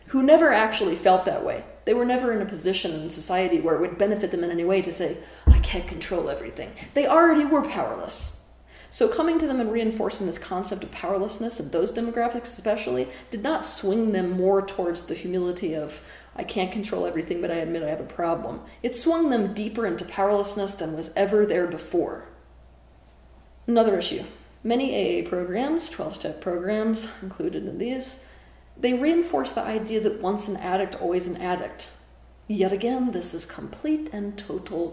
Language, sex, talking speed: English, female, 180 wpm